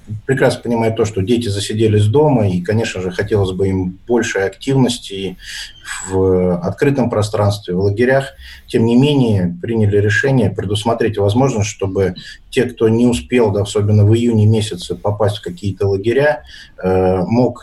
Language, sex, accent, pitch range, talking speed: Russian, male, native, 95-120 Hz, 145 wpm